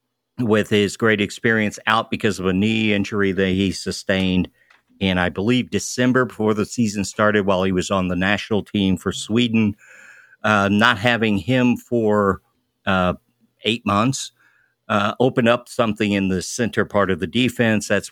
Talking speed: 165 wpm